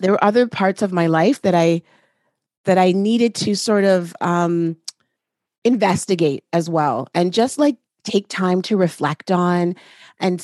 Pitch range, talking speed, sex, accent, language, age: 175-225 Hz, 160 wpm, female, American, English, 30-49